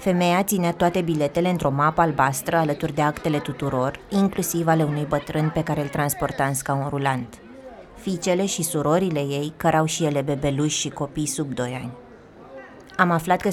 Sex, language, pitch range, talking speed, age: female, Romanian, 145-175 Hz, 170 wpm, 20-39